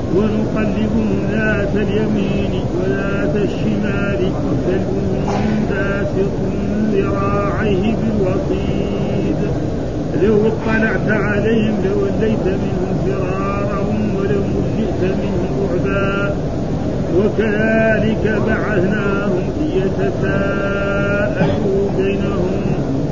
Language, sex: Arabic, male